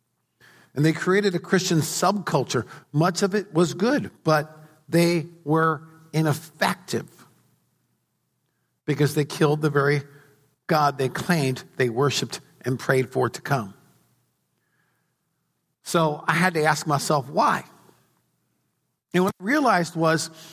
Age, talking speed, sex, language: 50-69, 125 wpm, male, English